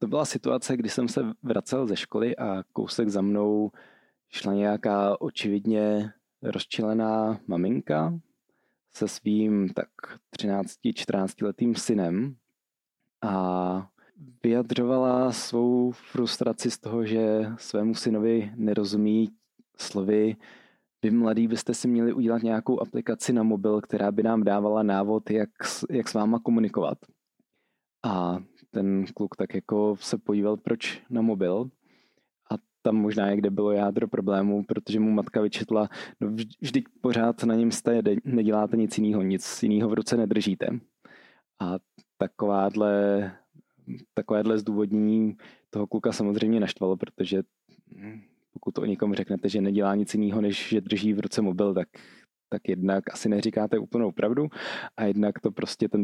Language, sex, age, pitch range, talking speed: Czech, male, 20-39, 100-110 Hz, 140 wpm